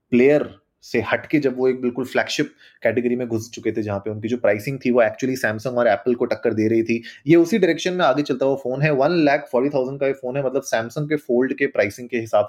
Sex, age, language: male, 30-49, Hindi